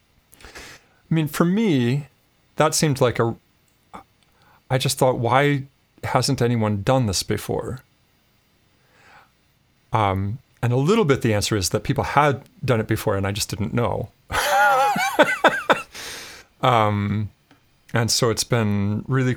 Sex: male